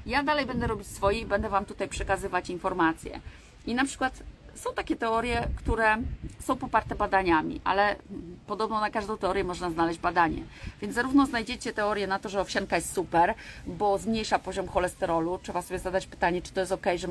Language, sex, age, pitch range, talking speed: Polish, female, 30-49, 175-220 Hz, 180 wpm